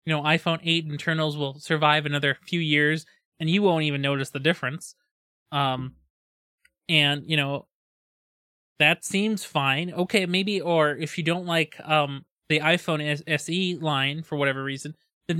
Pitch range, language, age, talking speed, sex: 145-170 Hz, English, 20-39, 155 wpm, male